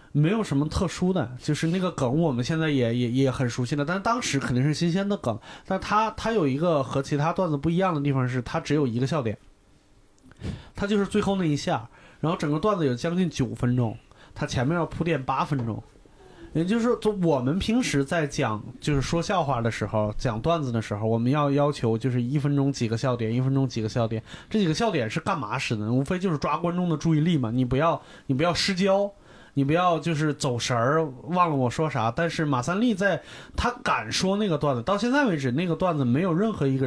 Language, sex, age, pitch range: Chinese, male, 20-39, 125-175 Hz